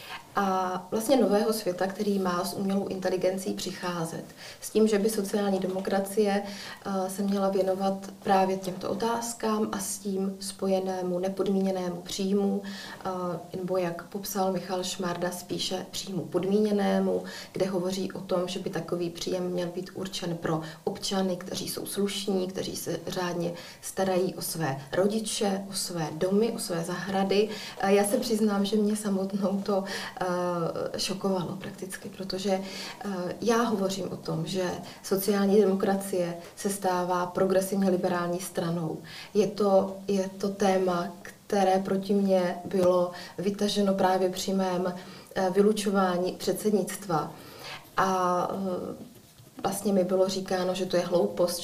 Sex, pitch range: female, 180-200 Hz